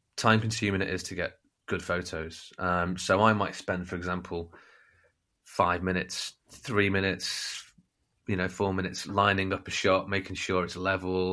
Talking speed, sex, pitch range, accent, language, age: 165 wpm, male, 90-100 Hz, British, English, 20-39